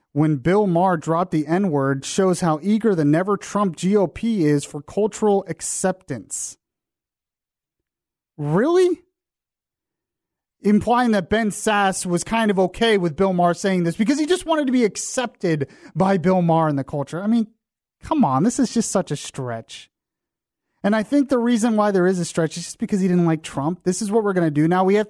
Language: English